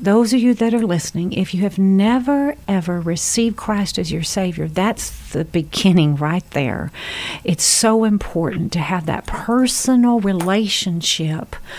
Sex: female